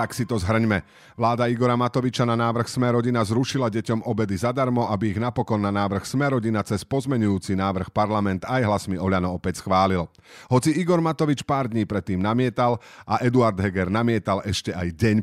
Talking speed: 170 wpm